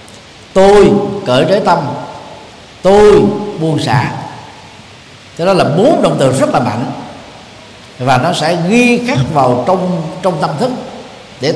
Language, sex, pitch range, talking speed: Vietnamese, male, 135-225 Hz, 140 wpm